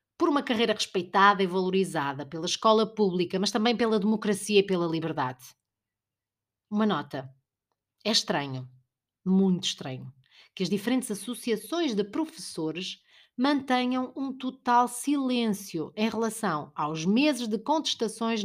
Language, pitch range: Portuguese, 190-250 Hz